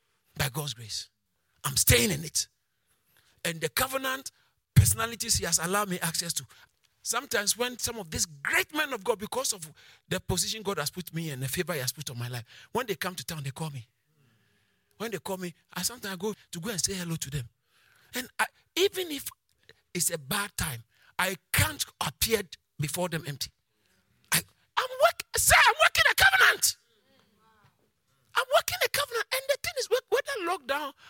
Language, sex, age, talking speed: English, male, 50-69, 175 wpm